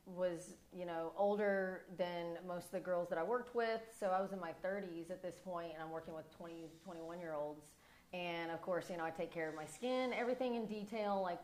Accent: American